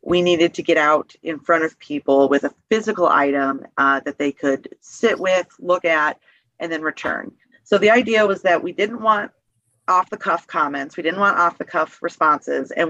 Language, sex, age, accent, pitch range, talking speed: English, female, 30-49, American, 145-185 Hz, 185 wpm